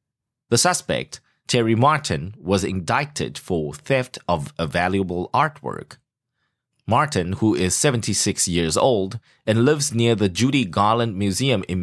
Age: 30-49